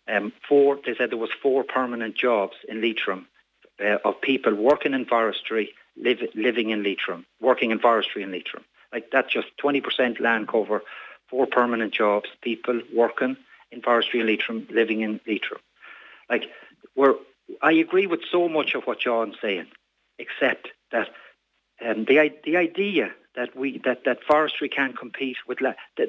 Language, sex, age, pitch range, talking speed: English, male, 60-79, 115-150 Hz, 165 wpm